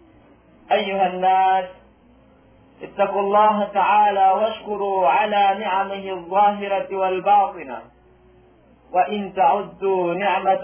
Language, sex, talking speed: Filipino, male, 75 wpm